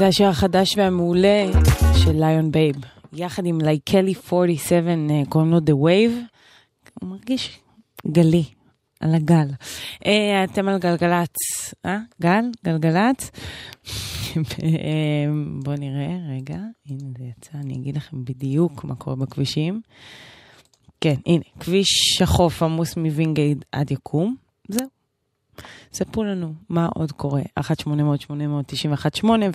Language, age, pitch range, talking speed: Hebrew, 20-39, 140-190 Hz, 115 wpm